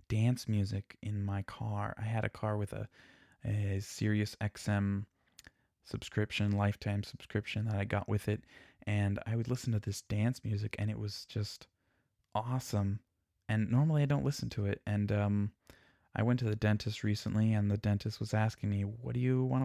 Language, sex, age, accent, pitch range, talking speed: English, male, 20-39, American, 100-115 Hz, 185 wpm